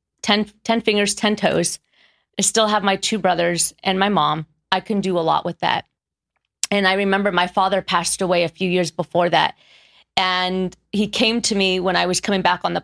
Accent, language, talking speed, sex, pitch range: American, English, 210 wpm, female, 180-215 Hz